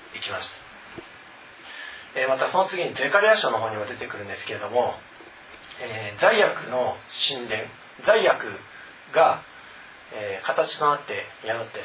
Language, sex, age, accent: Japanese, male, 40-59, native